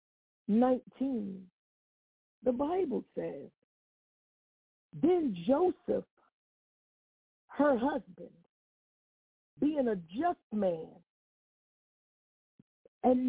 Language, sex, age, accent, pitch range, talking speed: English, female, 50-69, American, 235-315 Hz, 60 wpm